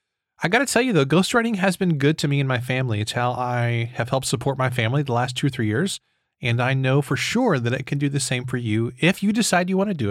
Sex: male